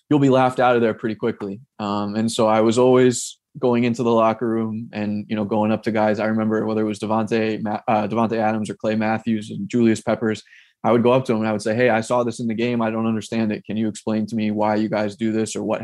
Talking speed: 280 wpm